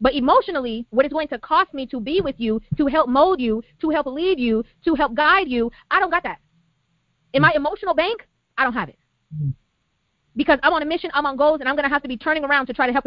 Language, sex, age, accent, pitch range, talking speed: English, female, 20-39, American, 265-325 Hz, 260 wpm